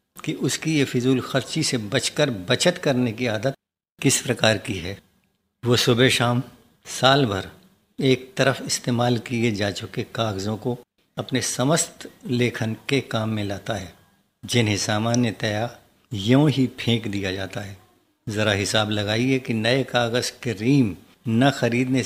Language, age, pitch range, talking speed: Hindi, 60-79, 110-130 Hz, 150 wpm